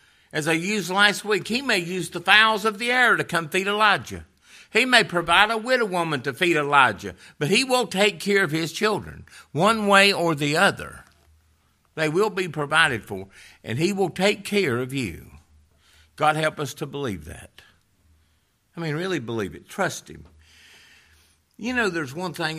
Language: English